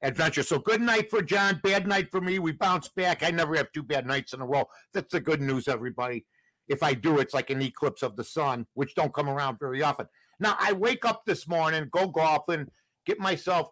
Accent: American